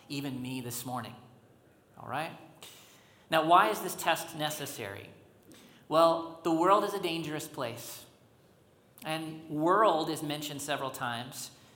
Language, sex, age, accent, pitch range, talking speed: English, male, 40-59, American, 125-155 Hz, 130 wpm